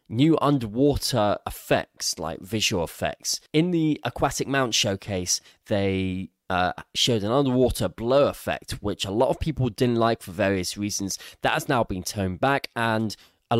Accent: British